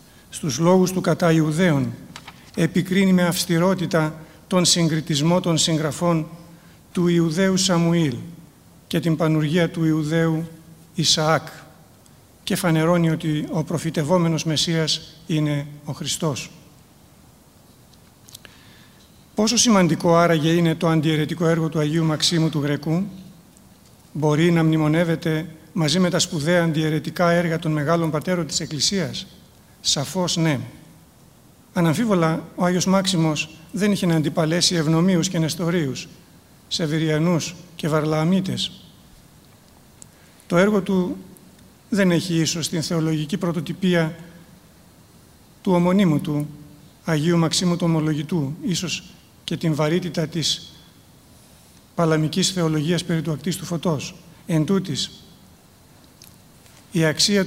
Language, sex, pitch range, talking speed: Greek, male, 155-175 Hz, 110 wpm